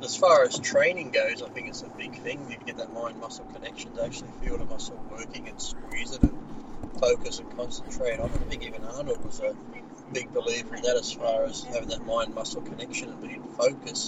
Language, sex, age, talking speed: English, male, 40-59, 220 wpm